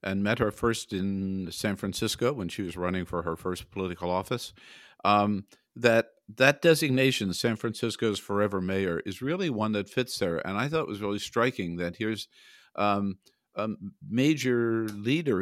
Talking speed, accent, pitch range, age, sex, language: 165 wpm, American, 95-115 Hz, 50-69, male, English